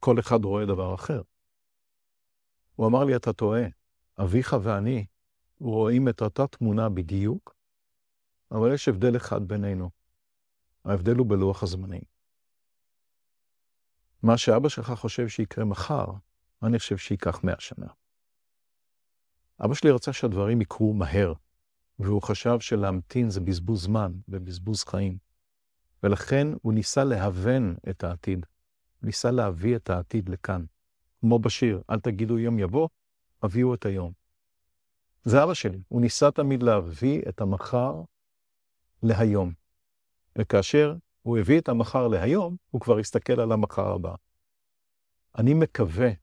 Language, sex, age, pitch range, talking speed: Hebrew, male, 50-69, 90-120 Hz, 125 wpm